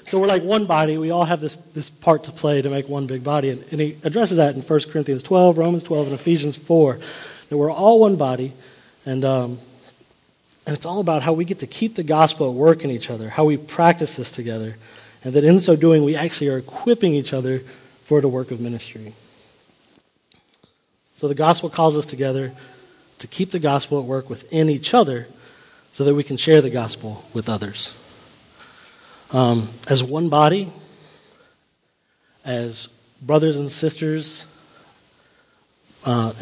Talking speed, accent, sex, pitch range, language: 180 wpm, American, male, 130-170 Hz, English